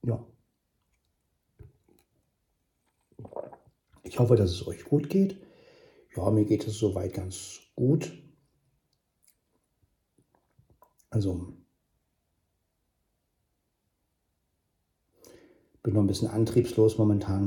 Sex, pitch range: male, 95-110 Hz